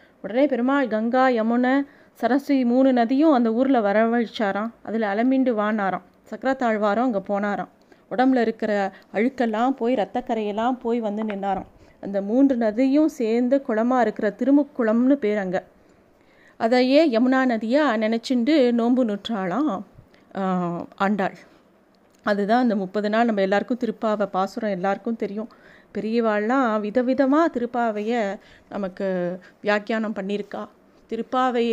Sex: female